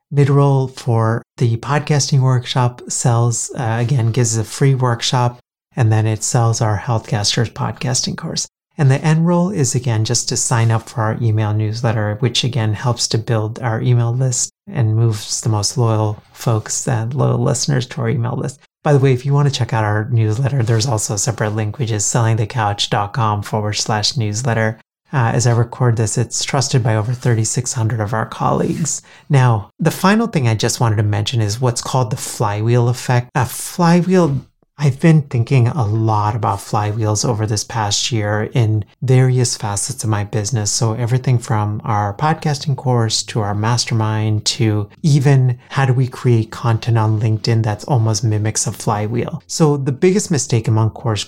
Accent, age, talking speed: American, 30-49, 180 wpm